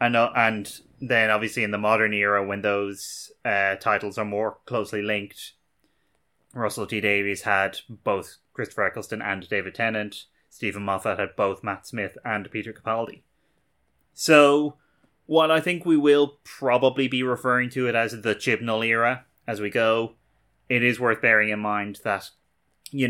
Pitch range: 105-125 Hz